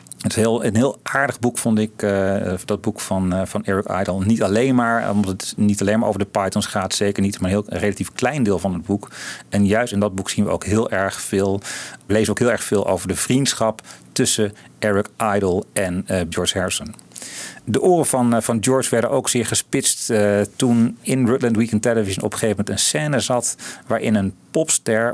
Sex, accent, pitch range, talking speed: male, Dutch, 95-115 Hz, 225 wpm